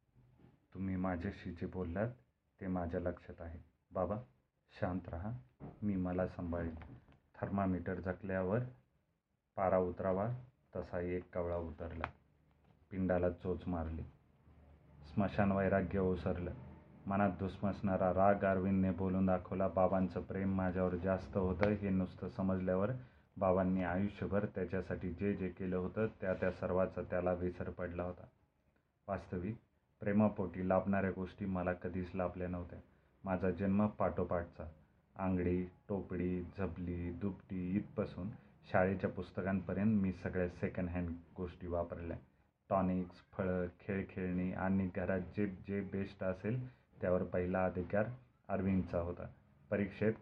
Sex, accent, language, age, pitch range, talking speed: male, native, Marathi, 30-49, 90-100 Hz, 110 wpm